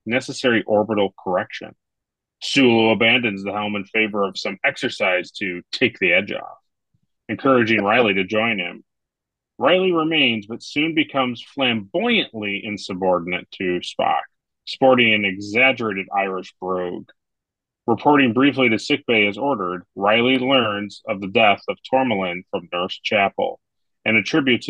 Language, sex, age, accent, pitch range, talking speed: English, male, 30-49, American, 105-130 Hz, 130 wpm